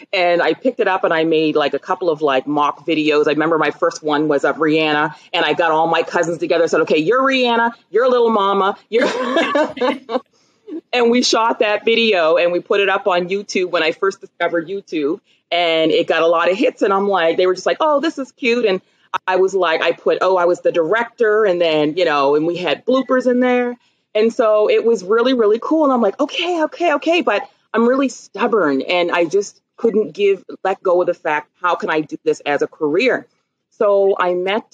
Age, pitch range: 30-49, 160-235 Hz